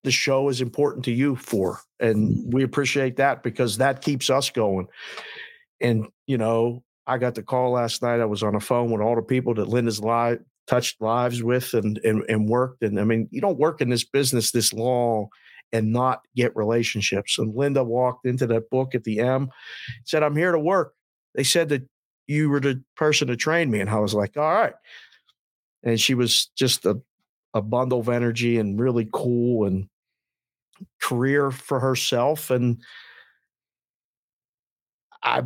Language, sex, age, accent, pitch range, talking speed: English, male, 50-69, American, 115-130 Hz, 180 wpm